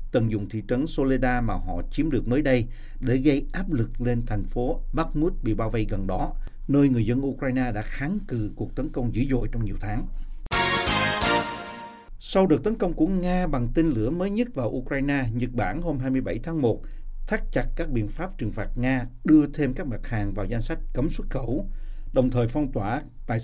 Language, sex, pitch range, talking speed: Vietnamese, male, 110-145 Hz, 210 wpm